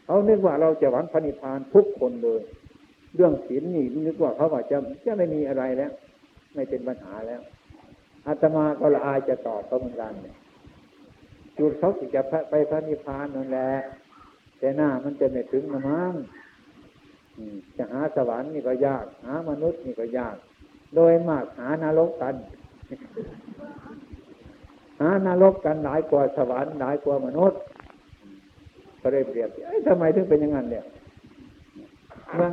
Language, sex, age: Thai, male, 60-79